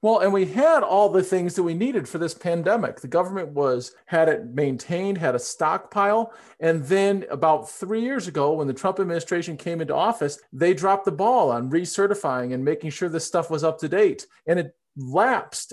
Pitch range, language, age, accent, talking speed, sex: 160-215 Hz, English, 40-59, American, 200 wpm, male